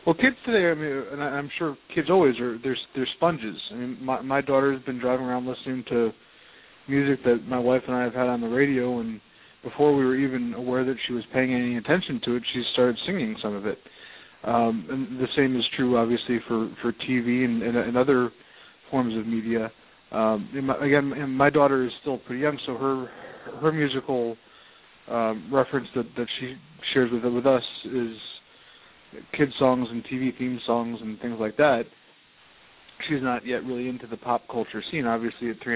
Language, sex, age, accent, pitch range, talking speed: English, male, 20-39, American, 120-135 Hz, 200 wpm